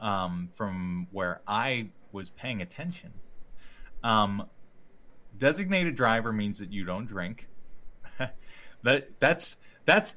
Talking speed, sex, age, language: 105 wpm, male, 30-49, English